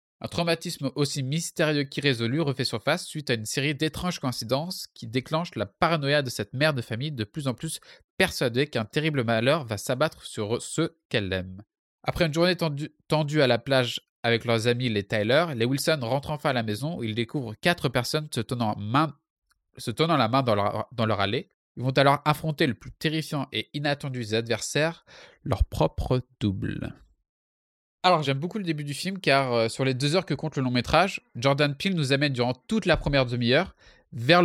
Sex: male